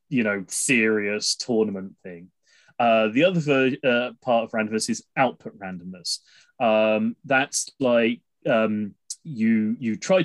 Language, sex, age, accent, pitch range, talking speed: English, male, 20-39, British, 105-125 Hz, 135 wpm